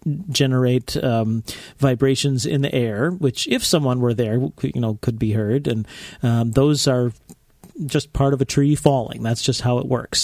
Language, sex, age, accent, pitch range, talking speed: English, male, 40-59, American, 120-150 Hz, 180 wpm